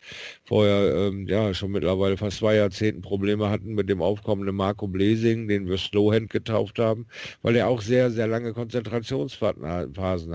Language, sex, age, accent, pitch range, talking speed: German, male, 50-69, German, 85-105 Hz, 155 wpm